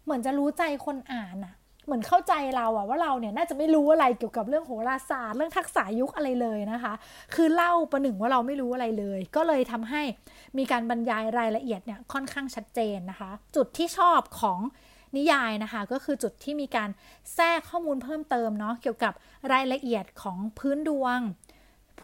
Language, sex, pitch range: Thai, female, 225-290 Hz